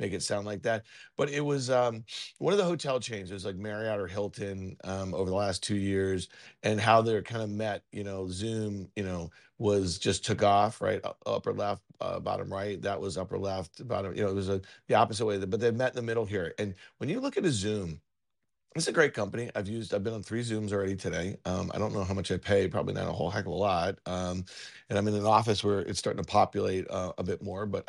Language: English